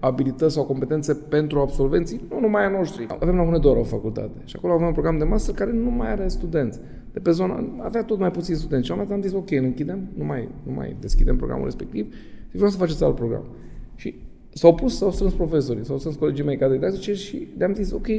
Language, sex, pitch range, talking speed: Romanian, male, 130-195 Hz, 230 wpm